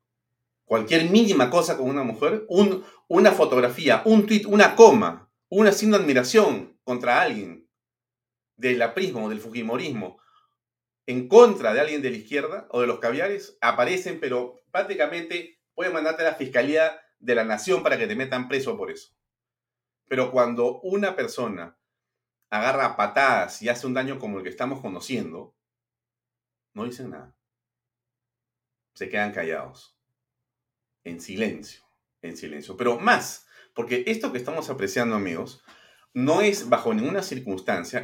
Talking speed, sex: 145 wpm, male